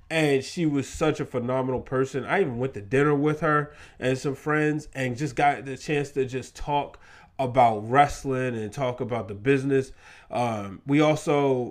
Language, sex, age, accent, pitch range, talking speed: English, male, 20-39, American, 125-155 Hz, 180 wpm